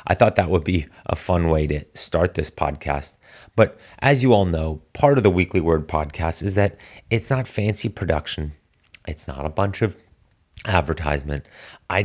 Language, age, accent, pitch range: English, 30-49, American, 75-105 Hz